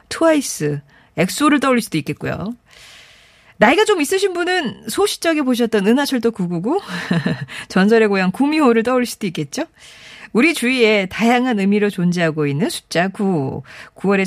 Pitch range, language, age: 185-290 Hz, Korean, 40-59